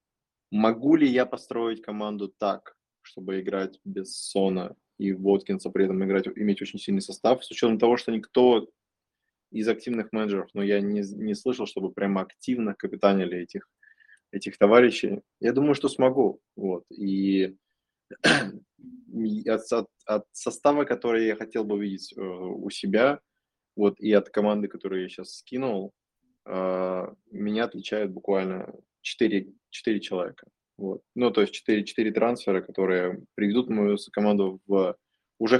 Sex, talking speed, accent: male, 140 wpm, native